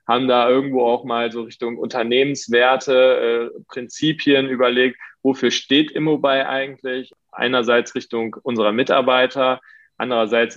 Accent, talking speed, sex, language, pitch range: German, 115 wpm, male, German, 115-135 Hz